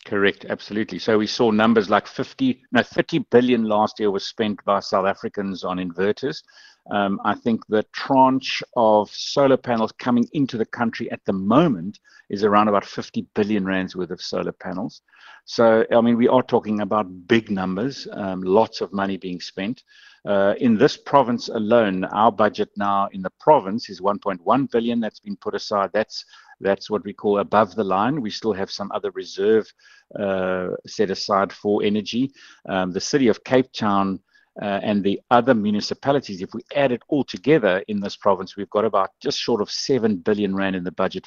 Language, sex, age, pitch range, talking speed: English, male, 60-79, 100-130 Hz, 190 wpm